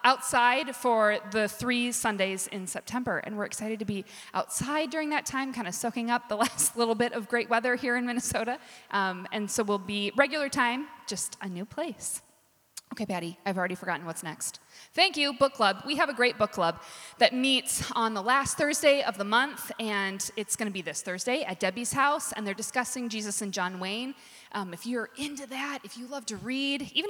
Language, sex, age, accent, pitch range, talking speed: English, female, 20-39, American, 195-255 Hz, 210 wpm